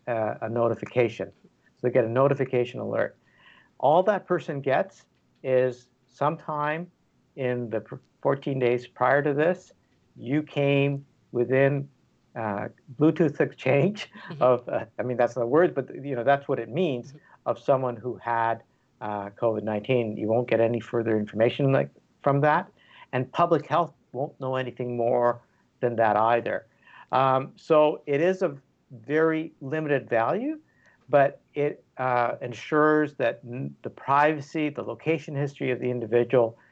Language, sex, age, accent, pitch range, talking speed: English, male, 60-79, American, 120-145 Hz, 145 wpm